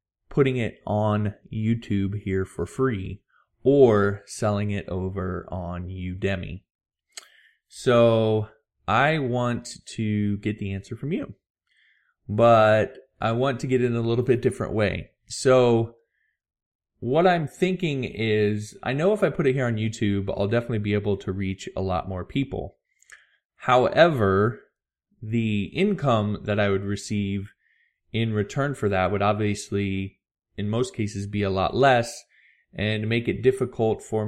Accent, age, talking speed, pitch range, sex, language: American, 20-39, 145 wpm, 100-120 Hz, male, English